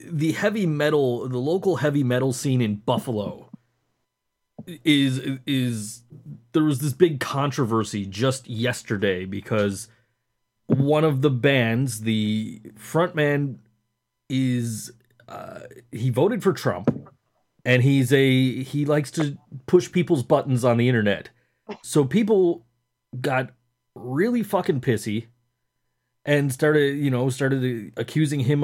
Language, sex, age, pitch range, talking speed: English, male, 30-49, 120-150 Hz, 120 wpm